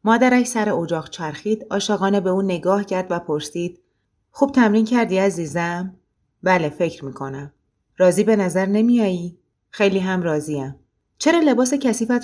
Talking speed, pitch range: 135 wpm, 170-220 Hz